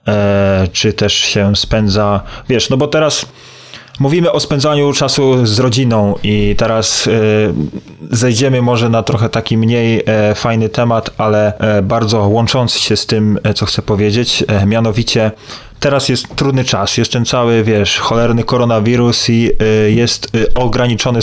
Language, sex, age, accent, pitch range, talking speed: Polish, male, 20-39, native, 110-130 Hz, 135 wpm